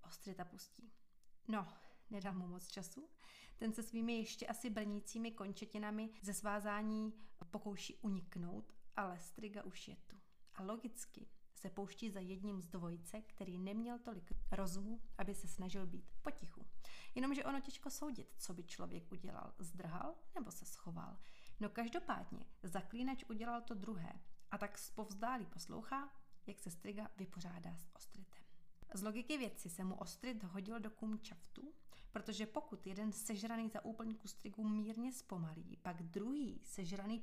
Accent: native